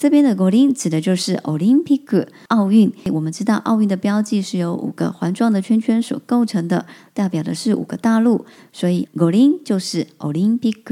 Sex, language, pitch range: male, Chinese, 180-240 Hz